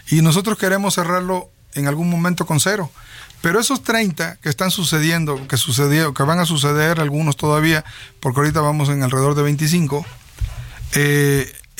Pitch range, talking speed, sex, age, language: 135-180 Hz, 160 wpm, male, 40-59, Spanish